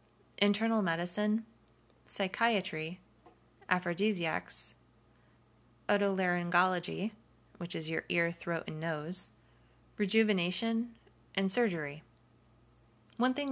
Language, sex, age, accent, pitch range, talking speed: English, female, 20-39, American, 160-200 Hz, 75 wpm